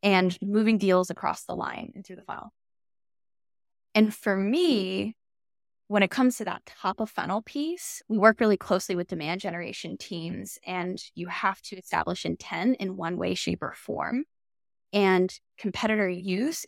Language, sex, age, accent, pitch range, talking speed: English, female, 10-29, American, 180-210 Hz, 160 wpm